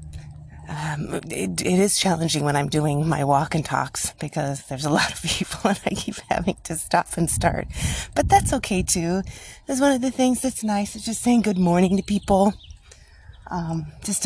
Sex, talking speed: female, 190 wpm